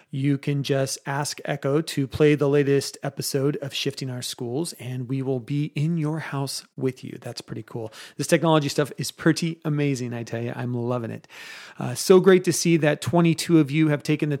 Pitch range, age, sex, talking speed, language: 140-160 Hz, 30-49, male, 210 wpm, English